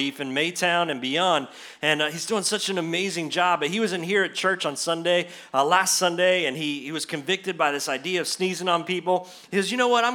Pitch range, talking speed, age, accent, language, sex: 170-210 Hz, 250 wpm, 30-49, American, English, male